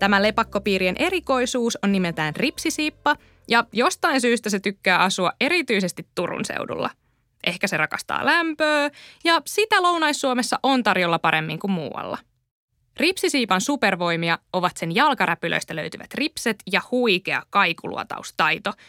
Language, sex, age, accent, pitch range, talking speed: Finnish, female, 20-39, native, 190-290 Hz, 120 wpm